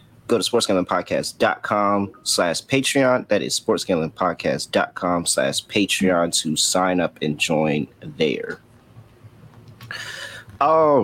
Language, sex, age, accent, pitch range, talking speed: English, male, 30-49, American, 95-135 Hz, 90 wpm